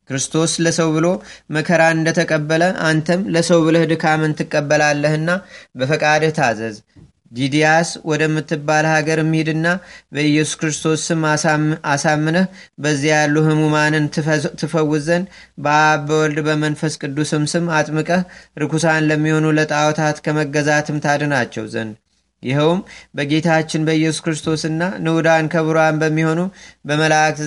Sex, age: male, 30-49